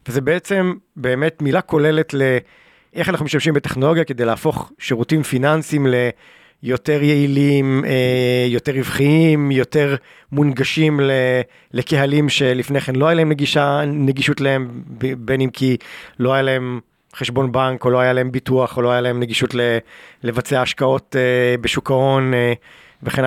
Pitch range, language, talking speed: 130-160 Hz, Hebrew, 145 wpm